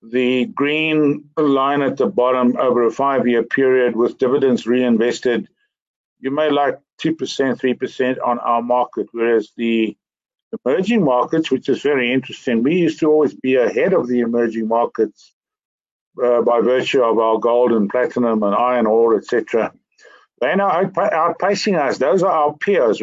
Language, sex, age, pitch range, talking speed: English, male, 60-79, 120-150 Hz, 155 wpm